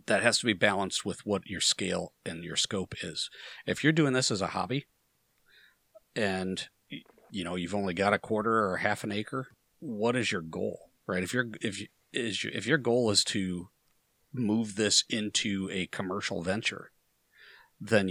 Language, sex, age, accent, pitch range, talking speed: English, male, 40-59, American, 95-120 Hz, 175 wpm